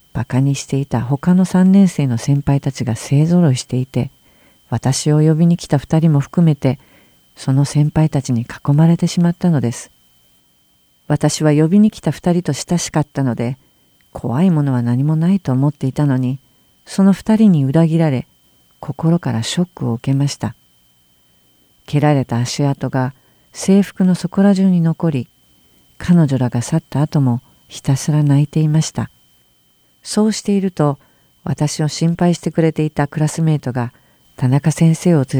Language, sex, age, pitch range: Japanese, female, 50-69, 120-165 Hz